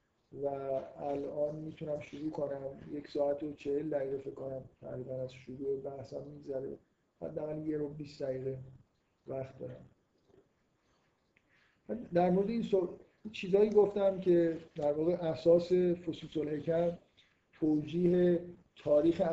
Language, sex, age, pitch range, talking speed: Persian, male, 50-69, 140-170 Hz, 125 wpm